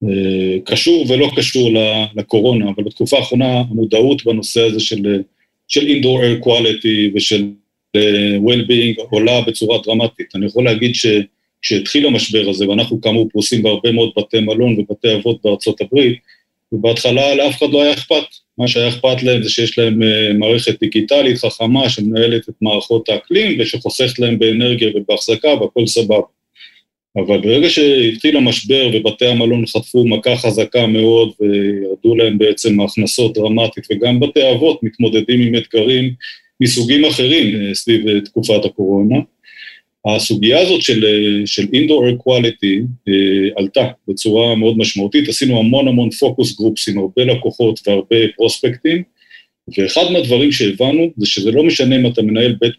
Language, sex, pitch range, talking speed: Hebrew, male, 105-125 Hz, 135 wpm